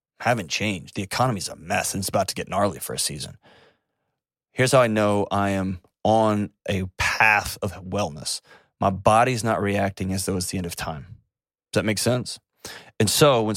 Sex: male